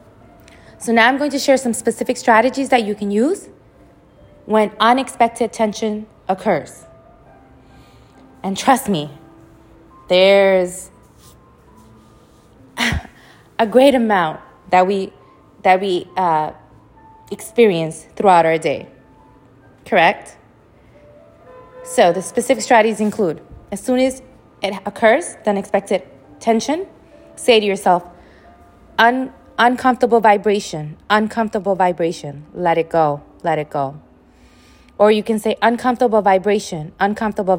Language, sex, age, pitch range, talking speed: English, female, 20-39, 160-230 Hz, 110 wpm